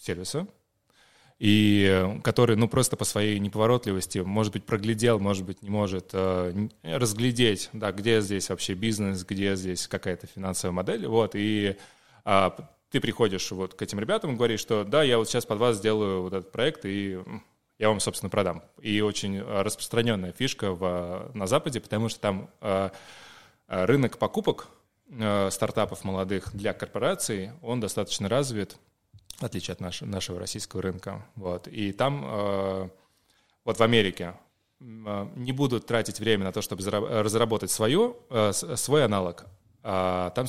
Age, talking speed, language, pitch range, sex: 20-39, 130 wpm, Russian, 95-115 Hz, male